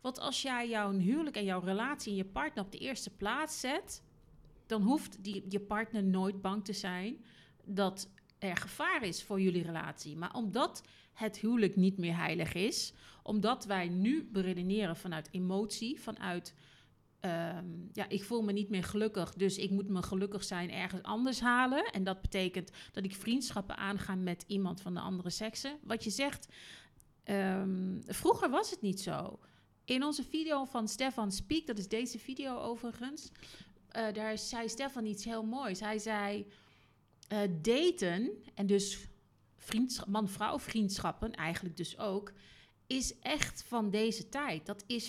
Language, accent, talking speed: Dutch, Dutch, 160 wpm